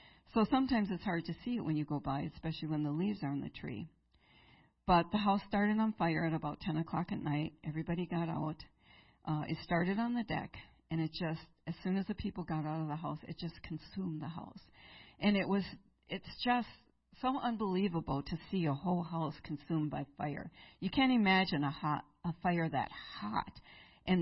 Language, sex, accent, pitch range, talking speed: English, female, American, 160-195 Hz, 205 wpm